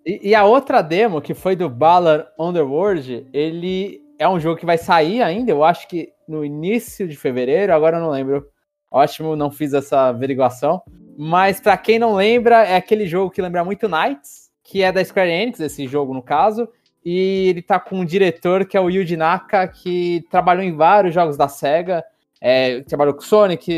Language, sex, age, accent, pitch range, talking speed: Portuguese, male, 20-39, Brazilian, 155-195 Hz, 190 wpm